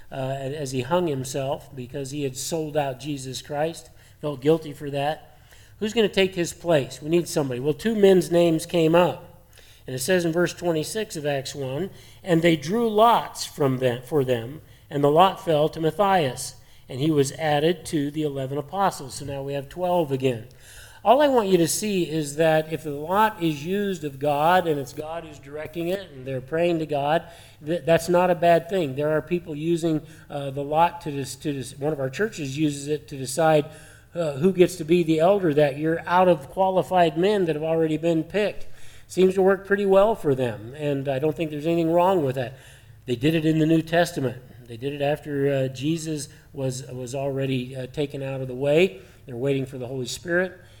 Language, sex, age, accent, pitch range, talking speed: English, male, 50-69, American, 135-170 Hz, 210 wpm